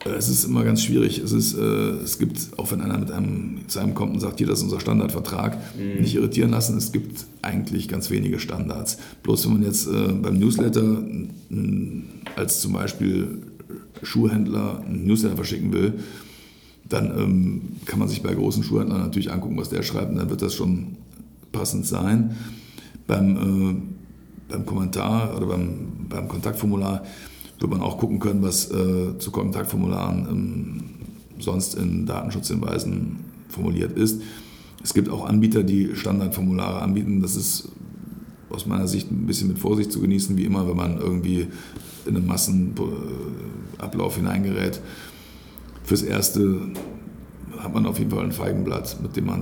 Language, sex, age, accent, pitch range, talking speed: German, male, 50-69, German, 90-105 Hz, 150 wpm